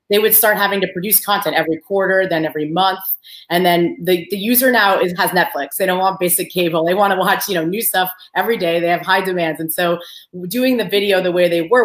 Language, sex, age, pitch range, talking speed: English, female, 30-49, 165-185 Hz, 250 wpm